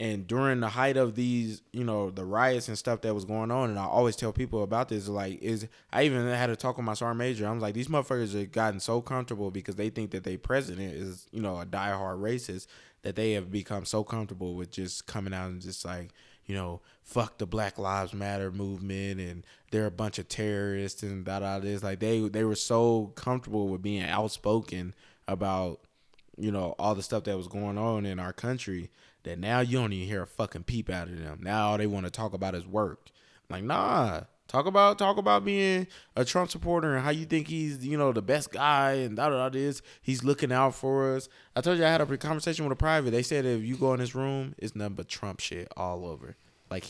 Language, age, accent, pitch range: English, 20-39, American, 100-125 Hz